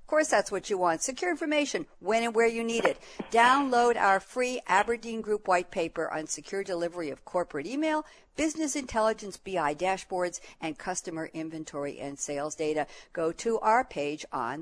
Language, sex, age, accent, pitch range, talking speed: English, female, 60-79, American, 160-230 Hz, 170 wpm